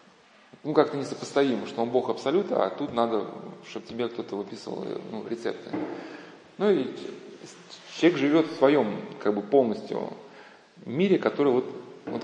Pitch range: 115-145 Hz